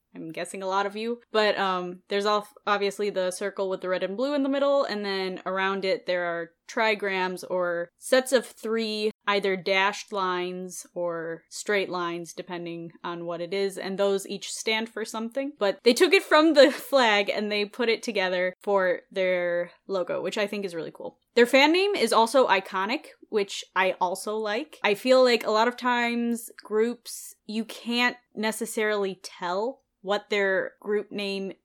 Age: 10-29